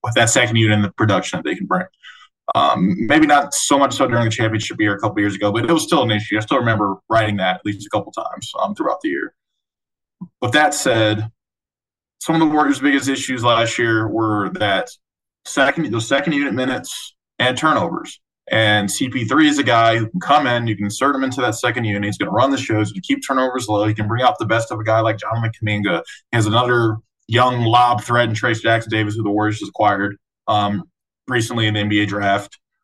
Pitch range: 105-125 Hz